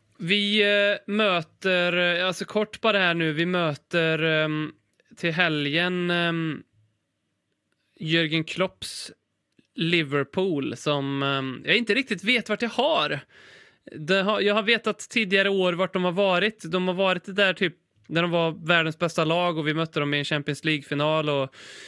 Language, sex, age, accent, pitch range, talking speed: Swedish, male, 20-39, native, 155-195 Hz, 145 wpm